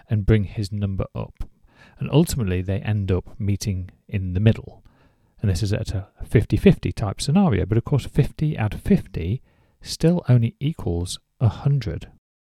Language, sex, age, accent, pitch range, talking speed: English, male, 40-59, British, 95-125 Hz, 160 wpm